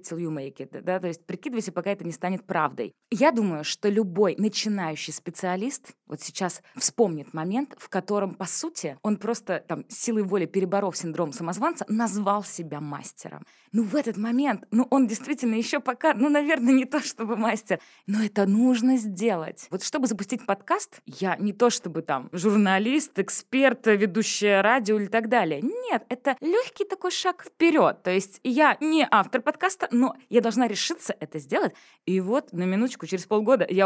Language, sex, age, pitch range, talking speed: Russian, female, 20-39, 185-255 Hz, 170 wpm